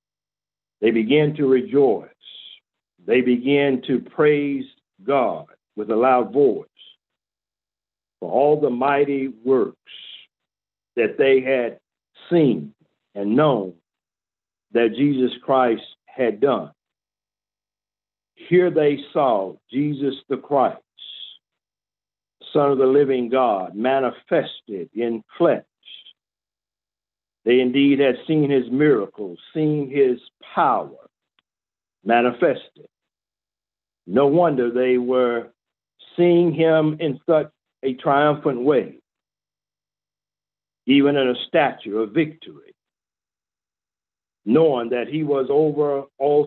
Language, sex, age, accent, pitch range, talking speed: English, male, 50-69, American, 125-150 Hz, 100 wpm